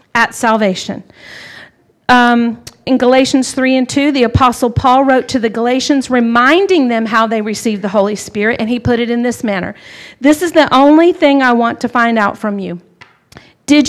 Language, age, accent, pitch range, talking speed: English, 50-69, American, 225-275 Hz, 185 wpm